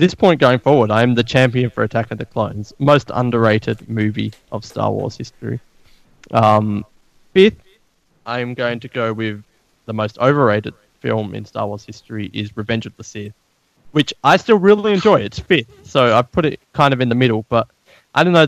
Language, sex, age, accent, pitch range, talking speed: English, male, 20-39, Australian, 110-135 Hz, 195 wpm